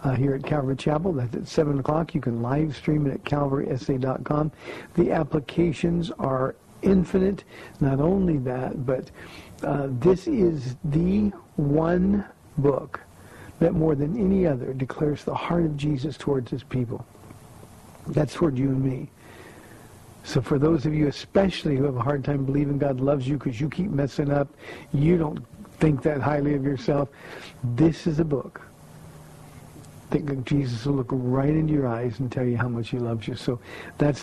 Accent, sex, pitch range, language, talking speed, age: American, male, 130-160 Hz, English, 170 wpm, 50-69